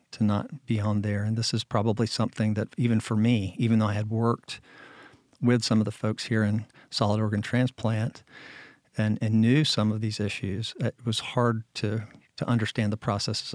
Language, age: English, 50-69